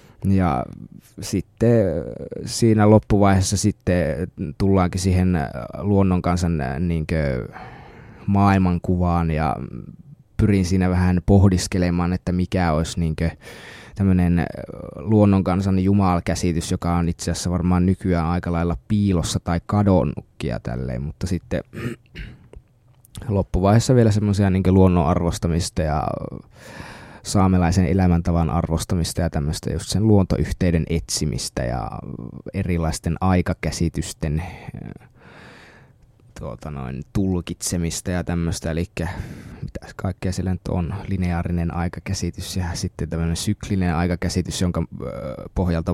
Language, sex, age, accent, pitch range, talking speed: Finnish, male, 20-39, native, 85-95 Hz, 100 wpm